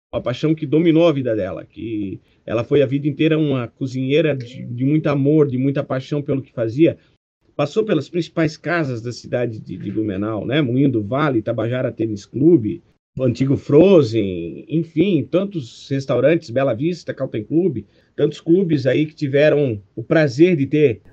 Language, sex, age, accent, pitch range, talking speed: Portuguese, male, 50-69, Brazilian, 125-160 Hz, 170 wpm